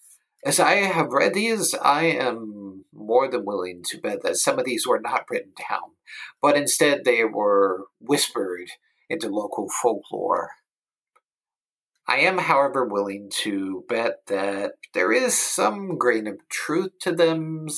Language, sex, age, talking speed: English, male, 50-69, 145 wpm